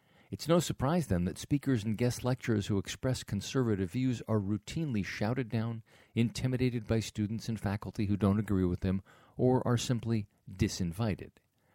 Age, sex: 50-69, male